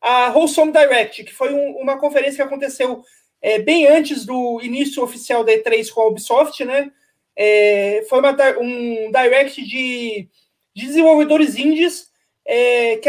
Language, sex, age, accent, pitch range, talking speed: Portuguese, male, 20-39, Brazilian, 245-300 Hz, 130 wpm